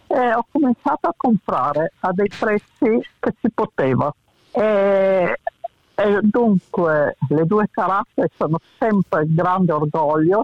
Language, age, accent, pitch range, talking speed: Italian, 50-69, native, 150-205 Hz, 125 wpm